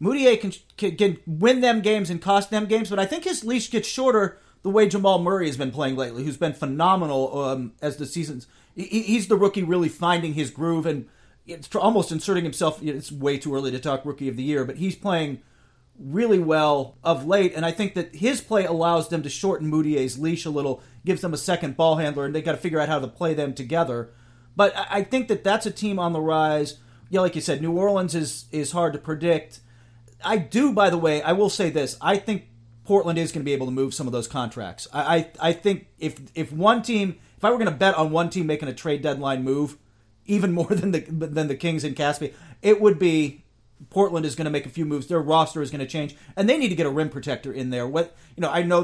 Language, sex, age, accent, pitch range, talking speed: English, male, 40-59, American, 140-190 Hz, 250 wpm